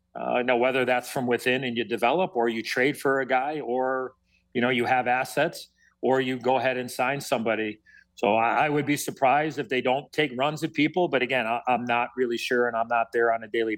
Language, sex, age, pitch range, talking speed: English, male, 40-59, 120-145 Hz, 245 wpm